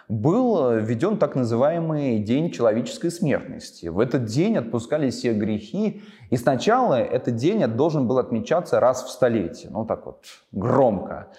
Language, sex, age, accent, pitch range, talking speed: Russian, male, 20-39, native, 115-170 Hz, 140 wpm